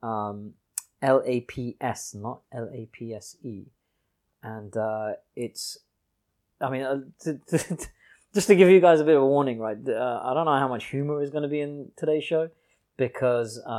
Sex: male